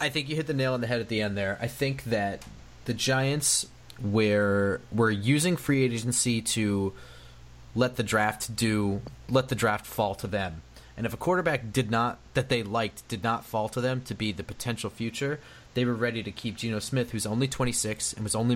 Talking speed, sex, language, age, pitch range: 215 wpm, male, English, 30-49, 105-125 Hz